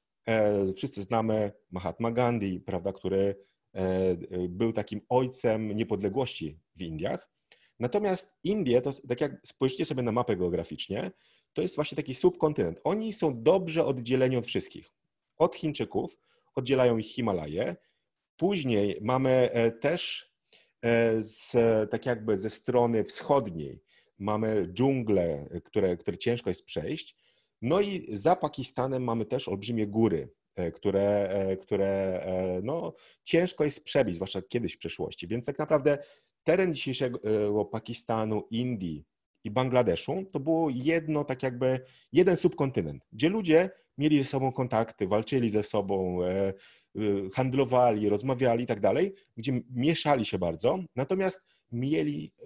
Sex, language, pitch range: male, Polish, 105-140 Hz